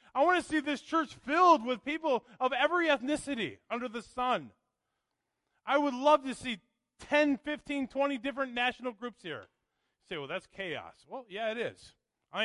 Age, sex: 30-49, male